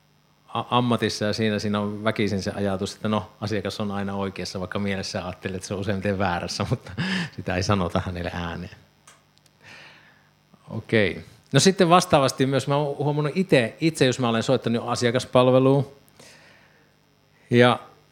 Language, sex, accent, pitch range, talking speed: Finnish, male, native, 95-125 Hz, 140 wpm